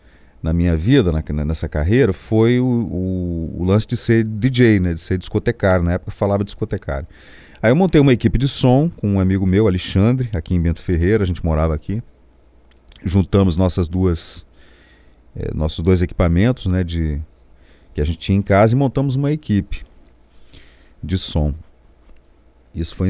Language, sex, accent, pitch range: Portuguese, male, Brazilian, 80-120 Hz